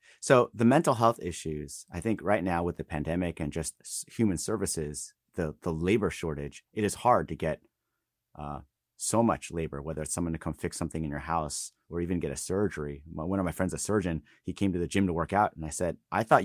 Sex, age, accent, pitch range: male, 30-49, American, 80-105 Hz